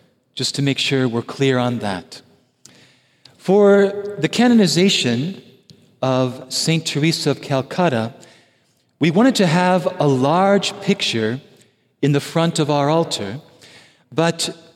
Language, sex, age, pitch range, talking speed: English, male, 50-69, 140-195 Hz, 120 wpm